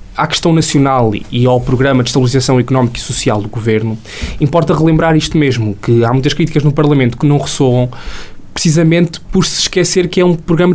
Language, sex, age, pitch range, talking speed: Portuguese, male, 20-39, 125-165 Hz, 190 wpm